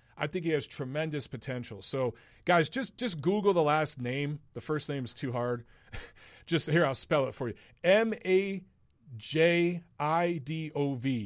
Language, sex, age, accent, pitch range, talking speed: English, male, 40-59, American, 120-170 Hz, 150 wpm